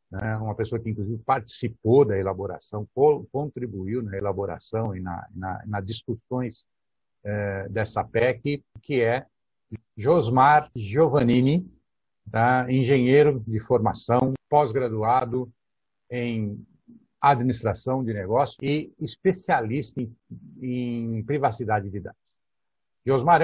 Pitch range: 115-145 Hz